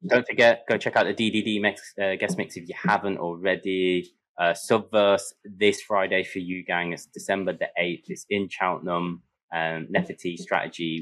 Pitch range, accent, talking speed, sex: 85-120 Hz, British, 175 wpm, male